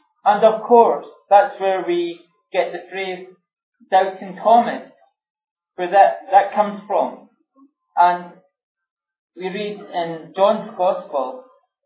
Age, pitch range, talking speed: 40-59, 175-255 Hz, 110 wpm